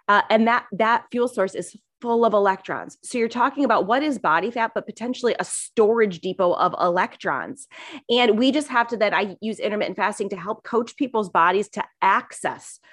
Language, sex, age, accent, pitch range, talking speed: English, female, 30-49, American, 190-235 Hz, 195 wpm